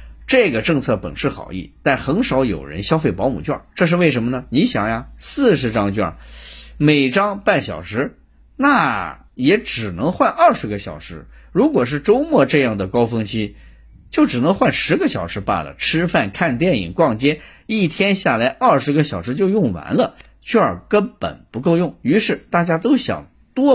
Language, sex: Chinese, male